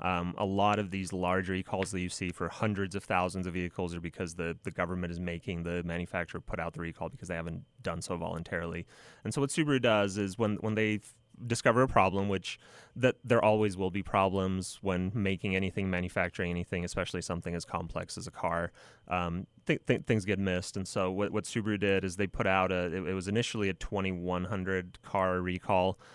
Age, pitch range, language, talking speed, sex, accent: 30-49, 90-105 Hz, English, 210 wpm, male, American